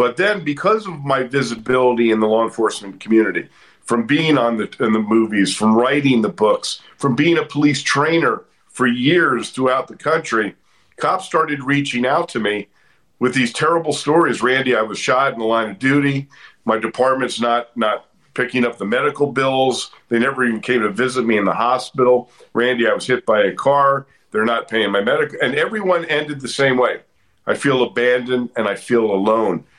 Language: English